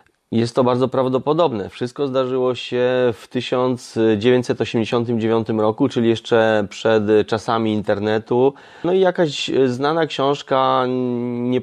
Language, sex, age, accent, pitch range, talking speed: Polish, male, 30-49, native, 115-140 Hz, 110 wpm